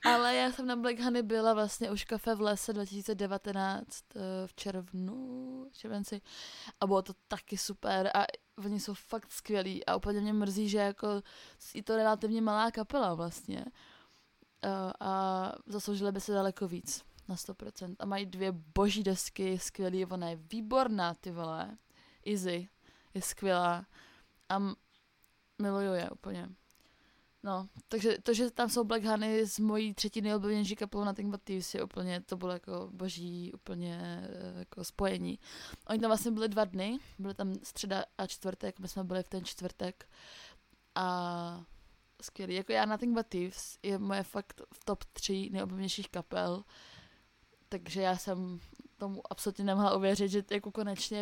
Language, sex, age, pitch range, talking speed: Czech, female, 20-39, 185-215 Hz, 155 wpm